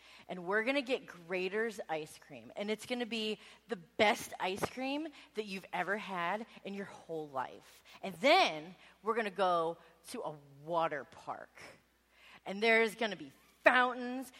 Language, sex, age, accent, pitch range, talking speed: English, female, 20-39, American, 180-275 Hz, 170 wpm